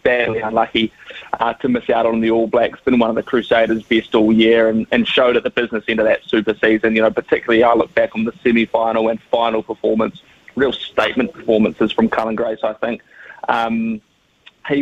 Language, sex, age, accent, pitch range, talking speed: English, male, 20-39, Australian, 115-125 Hz, 205 wpm